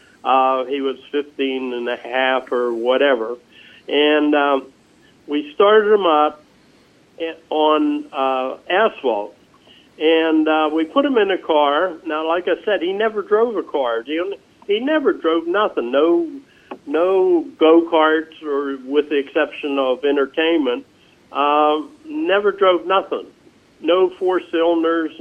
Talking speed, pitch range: 140 wpm, 140-170 Hz